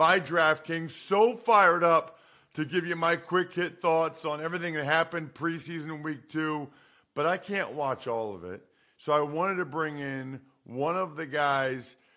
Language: English